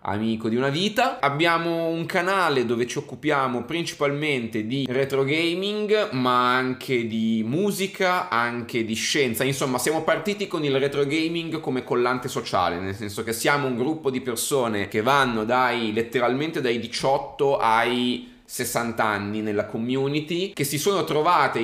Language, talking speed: Italian, 150 wpm